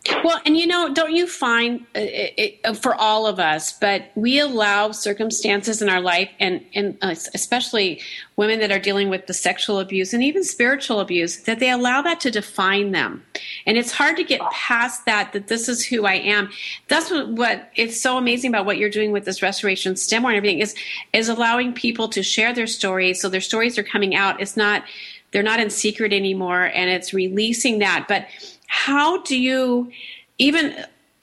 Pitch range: 195-240 Hz